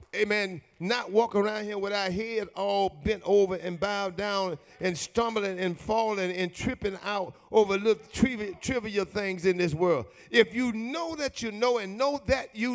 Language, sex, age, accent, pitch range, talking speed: English, male, 50-69, American, 205-260 Hz, 180 wpm